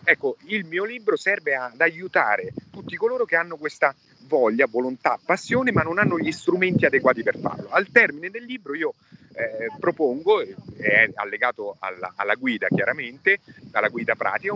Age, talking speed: 30-49, 165 wpm